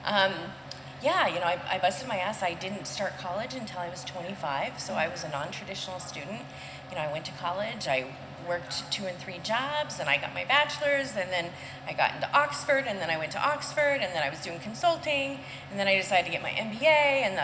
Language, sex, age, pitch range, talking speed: English, female, 30-49, 160-255 Hz, 230 wpm